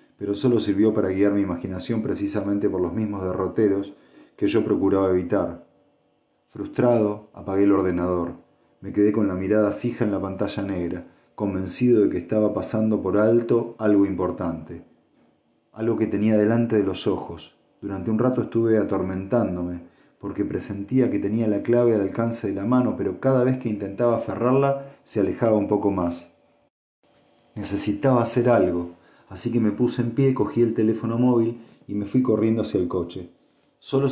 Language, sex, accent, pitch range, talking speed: Spanish, male, Argentinian, 100-120 Hz, 165 wpm